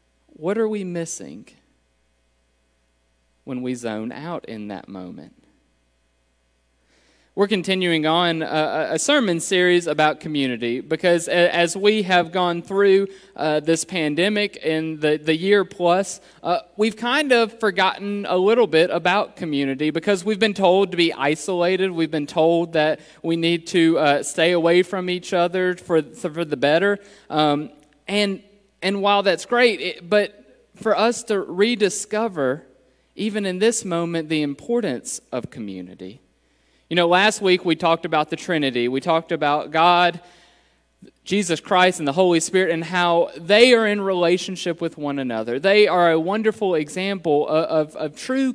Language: English